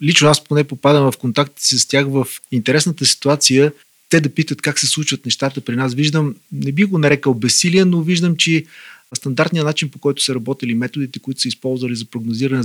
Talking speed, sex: 195 wpm, male